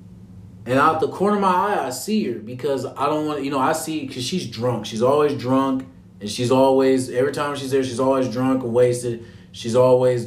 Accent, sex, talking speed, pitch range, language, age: American, male, 230 wpm, 100-150 Hz, English, 20-39